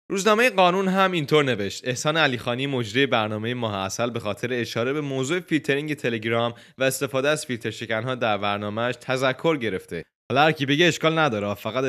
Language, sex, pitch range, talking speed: Persian, male, 110-145 Hz, 160 wpm